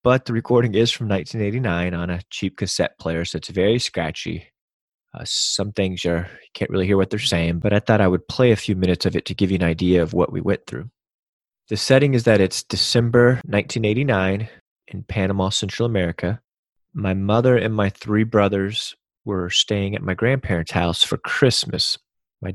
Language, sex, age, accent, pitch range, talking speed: English, male, 30-49, American, 90-115 Hz, 190 wpm